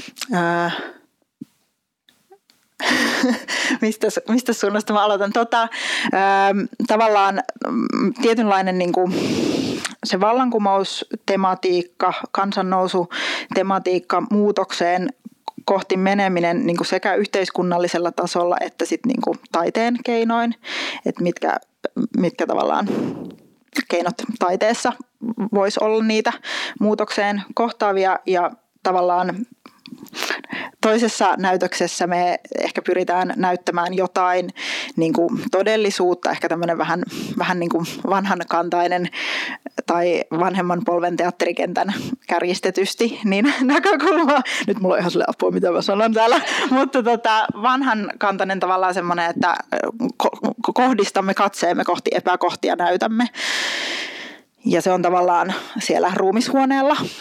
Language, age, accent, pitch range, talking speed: Finnish, 20-39, native, 180-245 Hz, 100 wpm